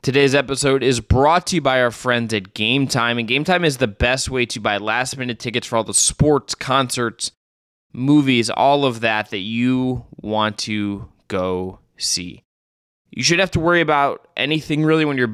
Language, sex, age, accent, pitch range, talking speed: English, male, 20-39, American, 105-130 Hz, 190 wpm